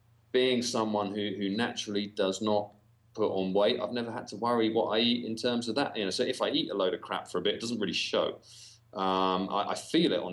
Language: English